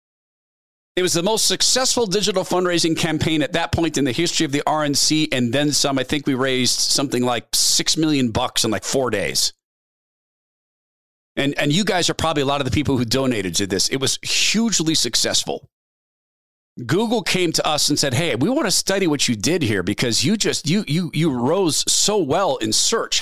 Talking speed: 200 wpm